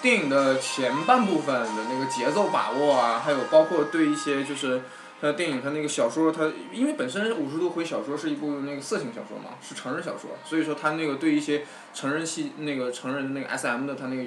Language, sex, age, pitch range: Chinese, male, 20-39, 145-185 Hz